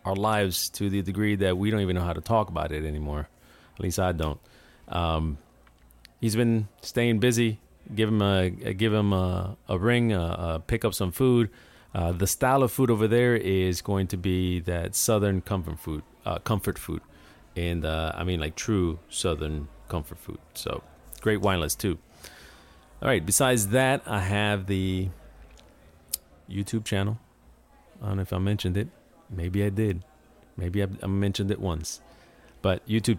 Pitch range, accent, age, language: 85-105 Hz, American, 30-49, English